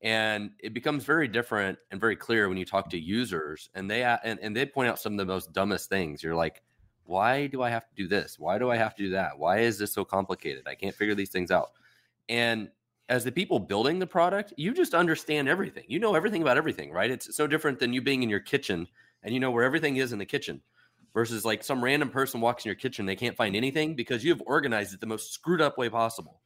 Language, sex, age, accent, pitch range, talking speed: English, male, 30-49, American, 95-130 Hz, 250 wpm